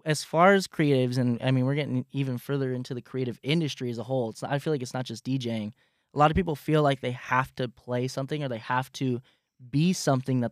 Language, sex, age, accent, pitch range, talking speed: English, male, 10-29, American, 125-145 Hz, 250 wpm